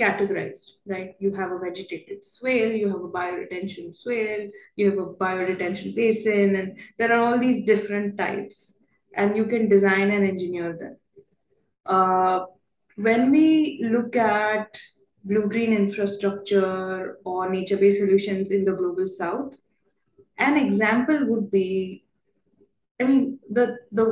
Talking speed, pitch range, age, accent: 130 wpm, 190-220 Hz, 10-29, Indian